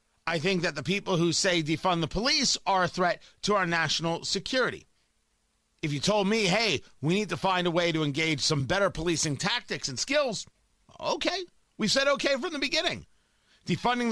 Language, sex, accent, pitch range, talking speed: English, male, American, 135-200 Hz, 185 wpm